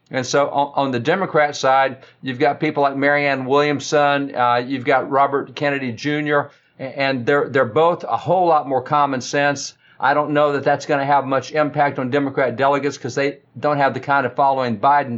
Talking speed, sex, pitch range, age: 200 wpm, male, 130-150 Hz, 50-69